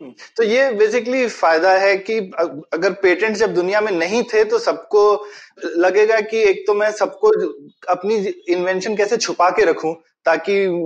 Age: 20-39